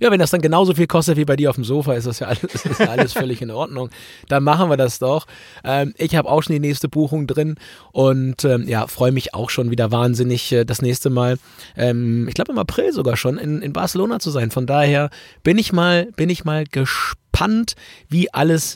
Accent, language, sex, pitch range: German, German, male, 130-165 Hz